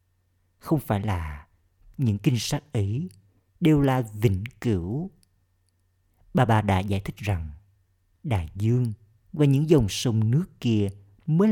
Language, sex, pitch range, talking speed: Vietnamese, male, 90-115 Hz, 135 wpm